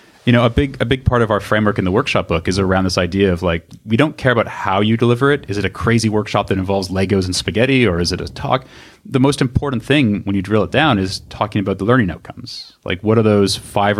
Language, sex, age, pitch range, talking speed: English, male, 30-49, 95-115 Hz, 270 wpm